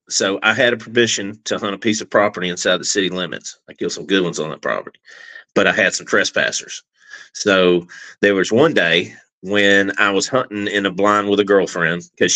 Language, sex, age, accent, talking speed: English, male, 40-59, American, 215 wpm